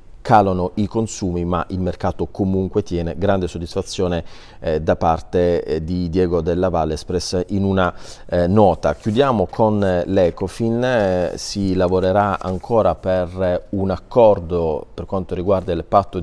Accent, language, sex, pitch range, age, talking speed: native, Italian, male, 85-100 Hz, 30-49, 140 wpm